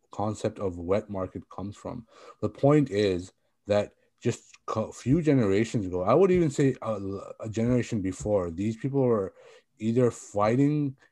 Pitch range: 100-135 Hz